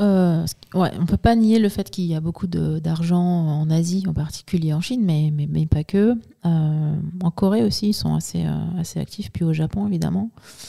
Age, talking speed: 30-49, 225 wpm